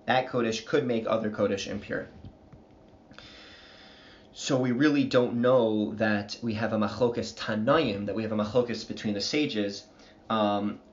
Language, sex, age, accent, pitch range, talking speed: English, male, 20-39, American, 105-125 Hz, 150 wpm